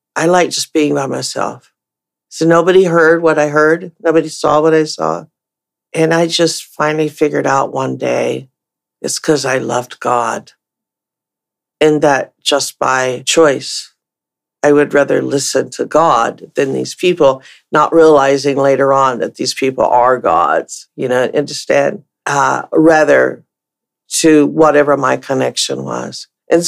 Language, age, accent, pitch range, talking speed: English, 50-69, American, 140-165 Hz, 145 wpm